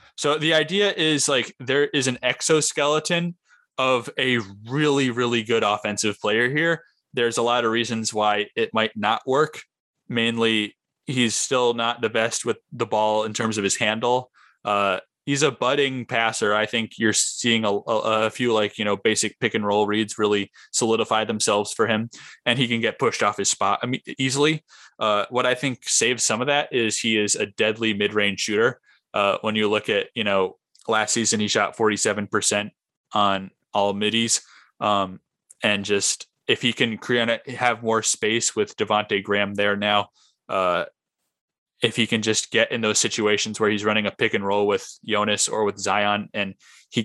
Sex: male